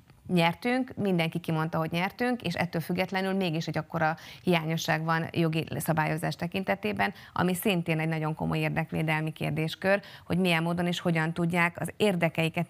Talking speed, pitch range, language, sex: 145 wpm, 160-190 Hz, Hungarian, female